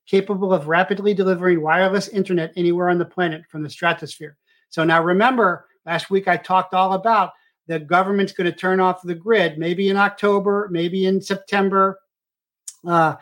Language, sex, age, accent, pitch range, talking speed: English, male, 50-69, American, 165-195 Hz, 170 wpm